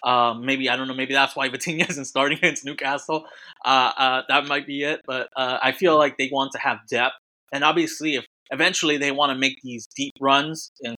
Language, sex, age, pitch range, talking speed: English, male, 20-39, 115-135 Hz, 225 wpm